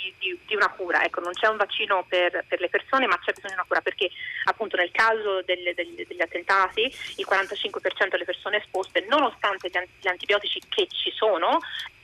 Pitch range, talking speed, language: 190-320 Hz, 190 wpm, Italian